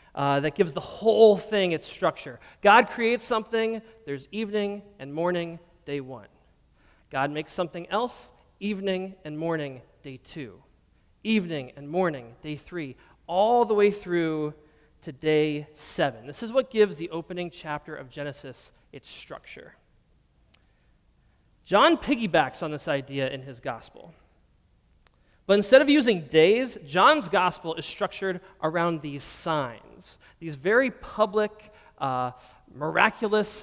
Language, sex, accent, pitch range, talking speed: English, male, American, 145-210 Hz, 130 wpm